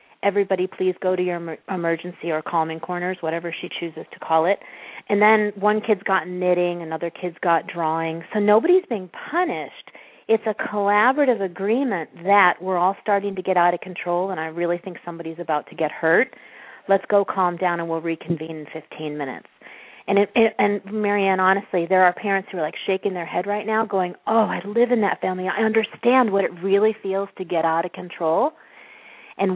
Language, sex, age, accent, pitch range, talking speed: English, female, 40-59, American, 170-205 Hz, 195 wpm